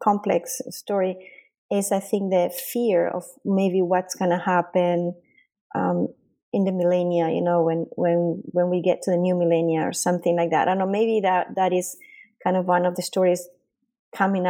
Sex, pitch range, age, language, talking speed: female, 175-195 Hz, 30-49, English, 190 wpm